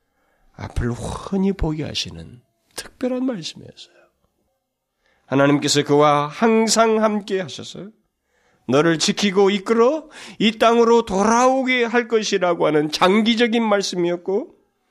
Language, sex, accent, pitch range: Korean, male, native, 155-235 Hz